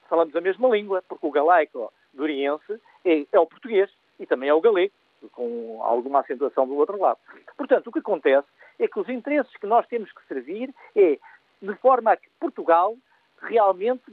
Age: 50-69